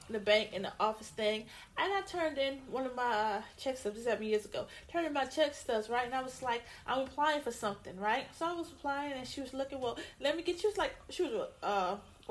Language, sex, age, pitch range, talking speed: English, female, 30-49, 240-335 Hz, 265 wpm